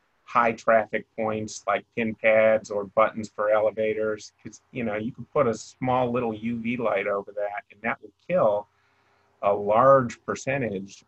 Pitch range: 100-110 Hz